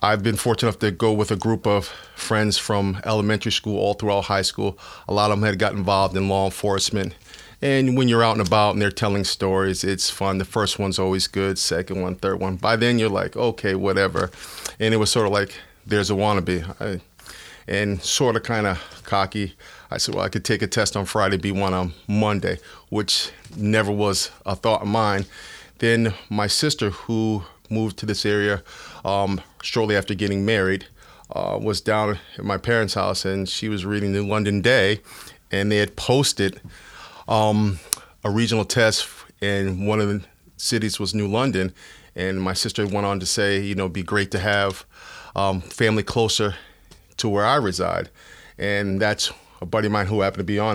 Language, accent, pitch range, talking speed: English, American, 95-110 Hz, 195 wpm